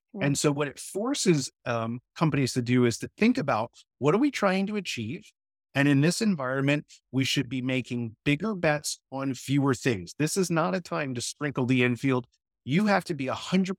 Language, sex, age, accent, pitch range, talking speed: English, male, 30-49, American, 120-165 Hz, 205 wpm